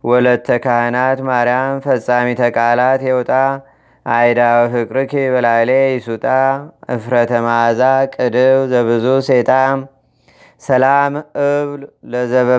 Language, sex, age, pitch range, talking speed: Amharic, male, 30-49, 125-135 Hz, 80 wpm